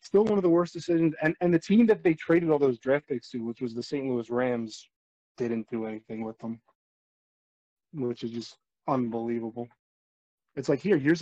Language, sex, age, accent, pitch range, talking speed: English, male, 20-39, American, 120-160 Hz, 200 wpm